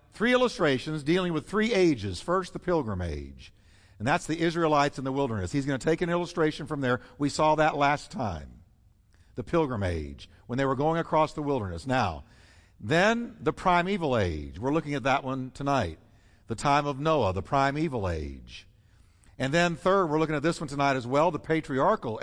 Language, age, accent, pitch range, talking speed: English, 60-79, American, 100-165 Hz, 190 wpm